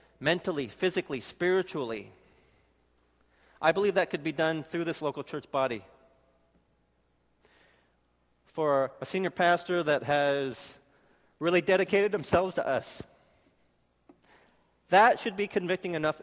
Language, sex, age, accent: Korean, male, 40-59, American